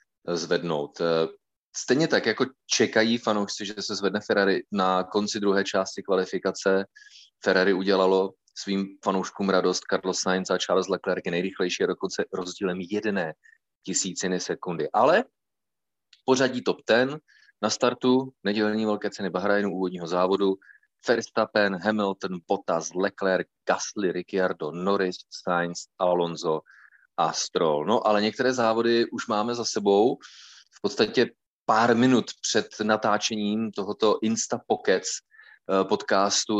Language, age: Czech, 30-49